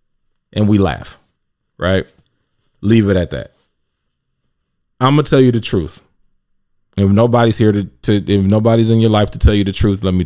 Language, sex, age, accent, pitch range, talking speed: English, male, 20-39, American, 100-120 Hz, 185 wpm